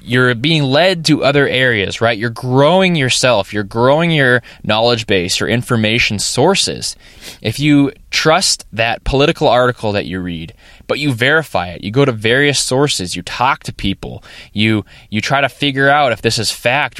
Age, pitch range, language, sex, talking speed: 20-39, 105-140 Hz, English, male, 175 wpm